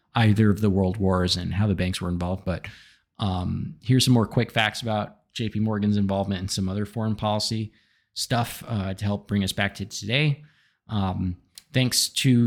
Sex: male